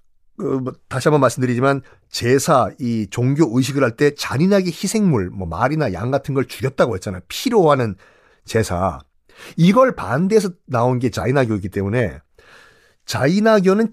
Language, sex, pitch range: Korean, male, 120-200 Hz